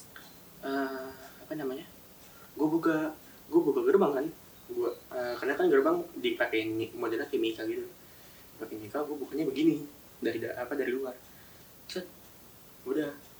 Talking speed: 130 wpm